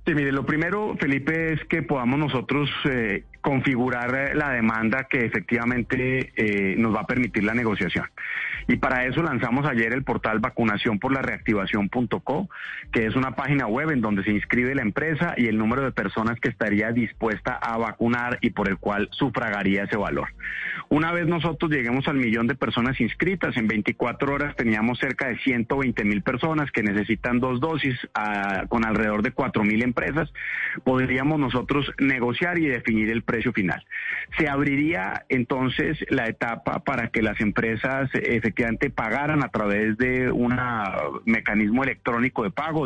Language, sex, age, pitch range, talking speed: Spanish, male, 30-49, 115-140 Hz, 165 wpm